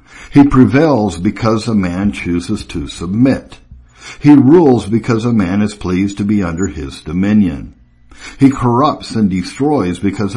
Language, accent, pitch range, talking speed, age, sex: English, American, 90-120 Hz, 145 wpm, 60-79, male